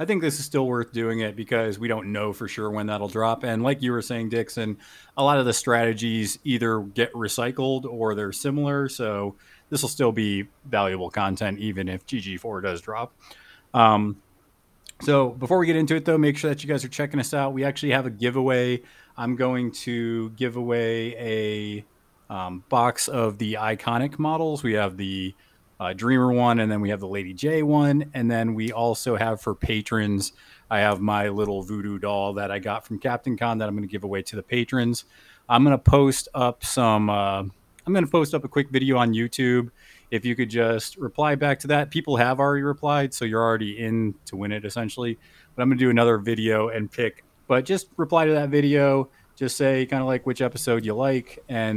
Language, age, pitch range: English, 20-39, 105-130 Hz